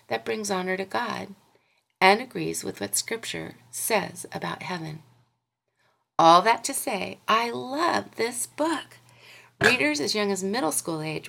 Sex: female